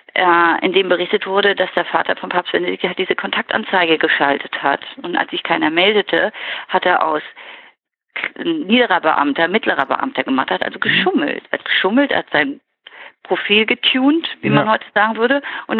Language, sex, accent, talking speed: German, female, German, 165 wpm